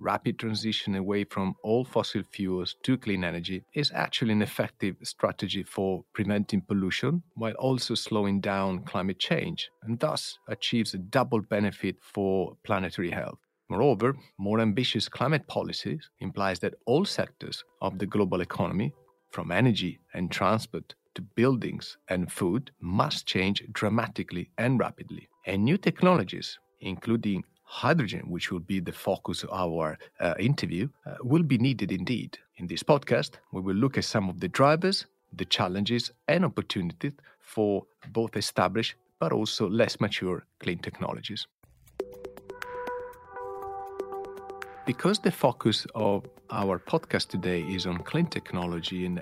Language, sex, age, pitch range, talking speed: Italian, male, 40-59, 95-125 Hz, 140 wpm